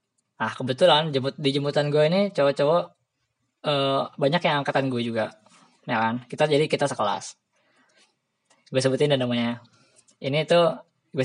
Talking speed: 140 wpm